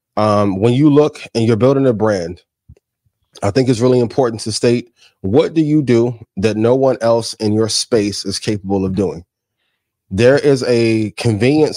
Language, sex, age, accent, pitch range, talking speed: English, male, 20-39, American, 105-125 Hz, 180 wpm